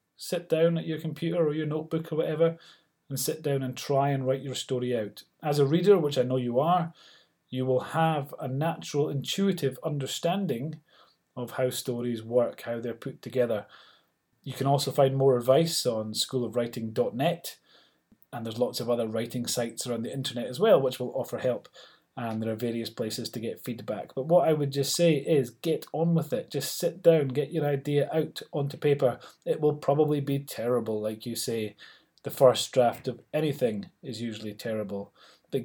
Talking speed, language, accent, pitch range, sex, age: 190 wpm, English, British, 120-155 Hz, male, 30-49